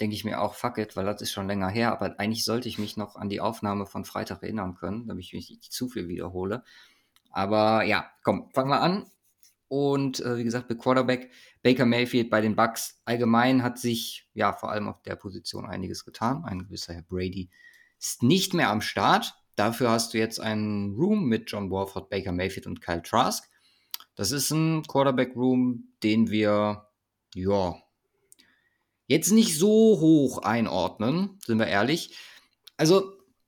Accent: German